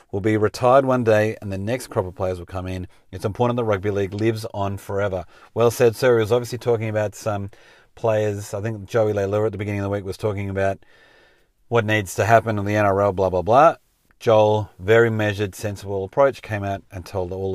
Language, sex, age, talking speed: English, male, 40-59, 220 wpm